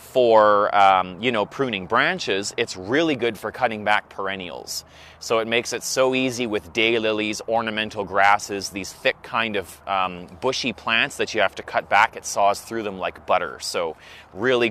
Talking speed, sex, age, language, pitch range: 180 wpm, male, 30-49, English, 100-125 Hz